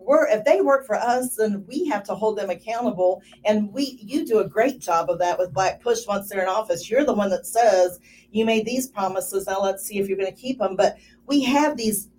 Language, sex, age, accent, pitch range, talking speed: English, female, 40-59, American, 195-245 Hz, 250 wpm